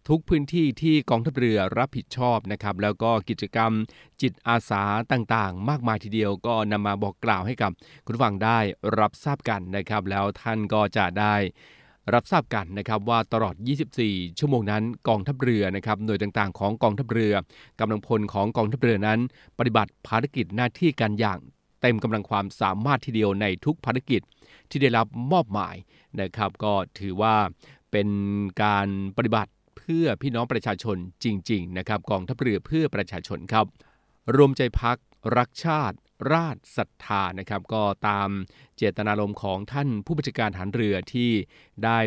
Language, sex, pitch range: Thai, male, 100-125 Hz